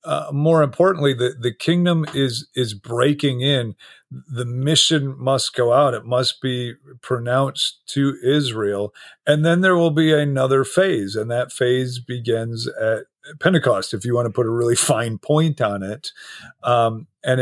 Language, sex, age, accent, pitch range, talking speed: English, male, 40-59, American, 110-140 Hz, 160 wpm